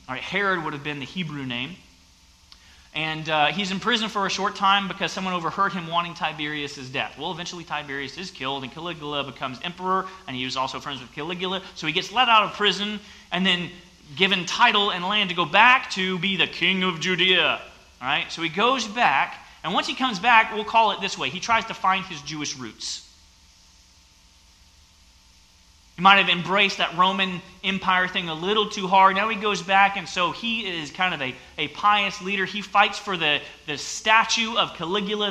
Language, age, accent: English, 30-49, American